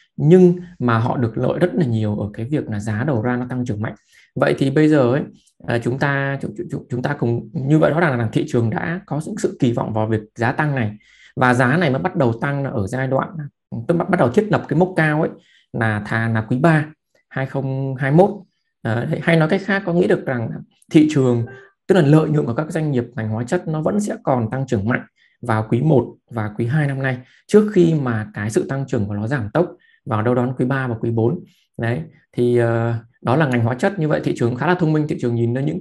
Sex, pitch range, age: male, 120-160 Hz, 20-39